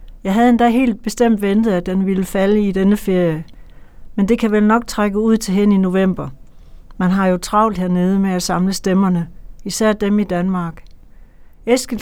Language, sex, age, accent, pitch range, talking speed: Danish, female, 60-79, native, 185-215 Hz, 190 wpm